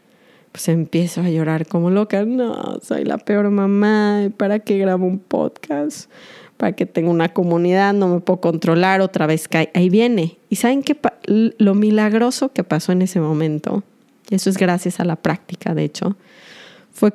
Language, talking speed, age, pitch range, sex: Spanish, 175 wpm, 30-49, 185-235 Hz, female